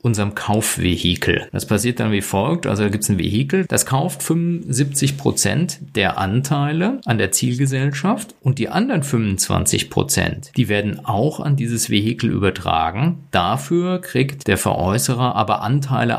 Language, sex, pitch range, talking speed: German, male, 105-140 Hz, 145 wpm